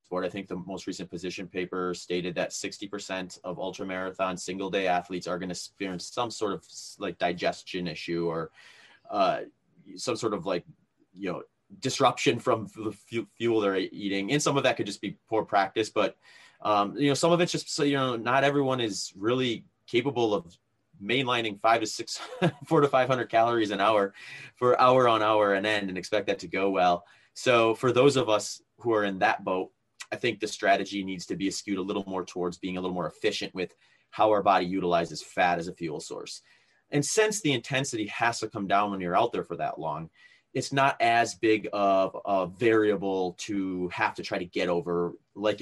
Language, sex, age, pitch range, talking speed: English, male, 30-49, 90-115 Hz, 205 wpm